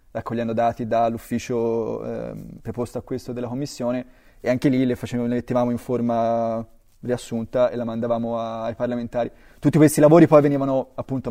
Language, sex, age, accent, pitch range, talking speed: Italian, male, 20-39, native, 115-130 Hz, 165 wpm